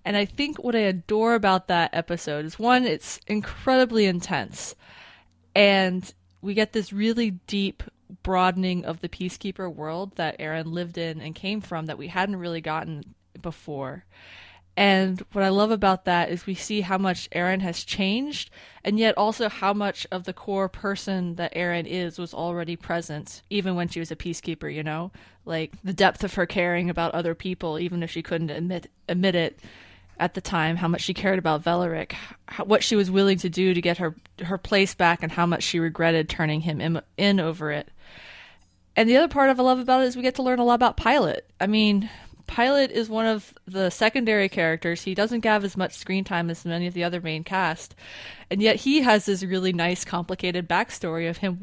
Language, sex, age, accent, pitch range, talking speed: English, female, 20-39, American, 170-205 Hz, 205 wpm